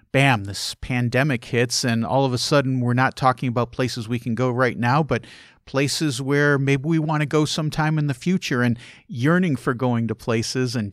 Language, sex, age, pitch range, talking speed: English, male, 50-69, 115-145 Hz, 210 wpm